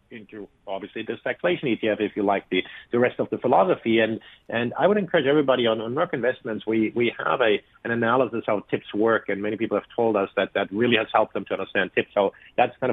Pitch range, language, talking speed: 105-125 Hz, English, 240 wpm